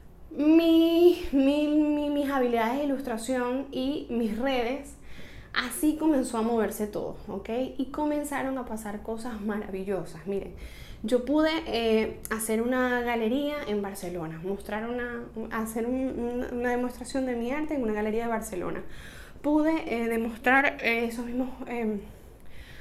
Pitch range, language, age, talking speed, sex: 215-265 Hz, Spanish, 10-29, 140 wpm, female